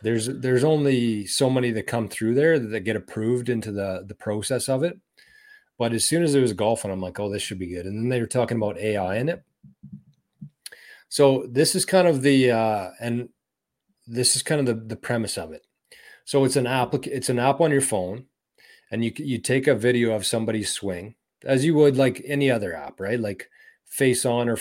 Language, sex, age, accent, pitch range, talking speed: English, male, 30-49, American, 115-135 Hz, 215 wpm